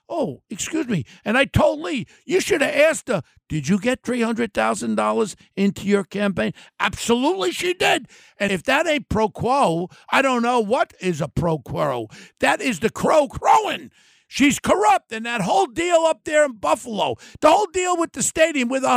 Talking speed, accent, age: 185 wpm, American, 50-69